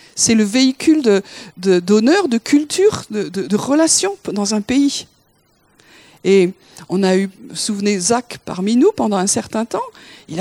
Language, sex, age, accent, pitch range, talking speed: French, female, 50-69, French, 210-285 Hz, 160 wpm